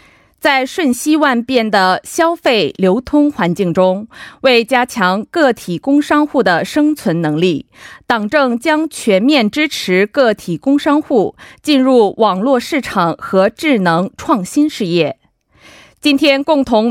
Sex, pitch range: female, 190-290 Hz